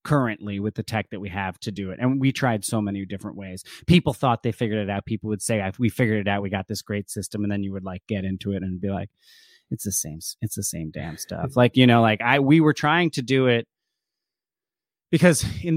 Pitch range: 100-135 Hz